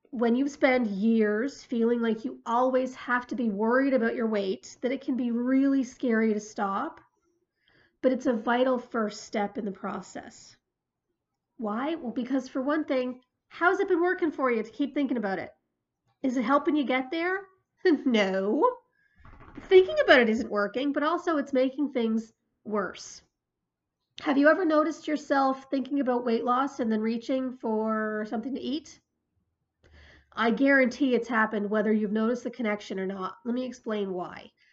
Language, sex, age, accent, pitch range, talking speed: English, female, 40-59, American, 220-280 Hz, 170 wpm